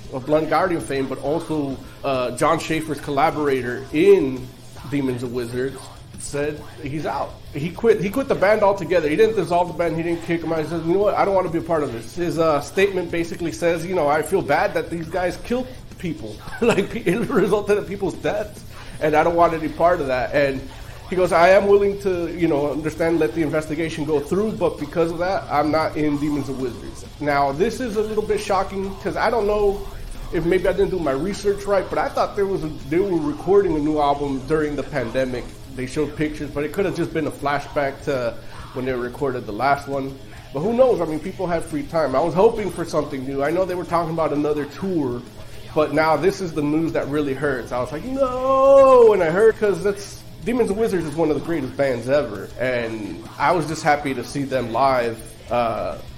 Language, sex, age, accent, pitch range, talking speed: English, male, 30-49, American, 135-180 Hz, 230 wpm